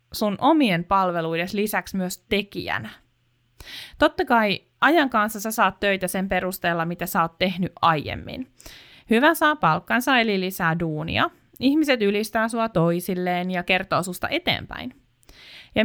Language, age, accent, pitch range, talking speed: Finnish, 20-39, native, 170-240 Hz, 135 wpm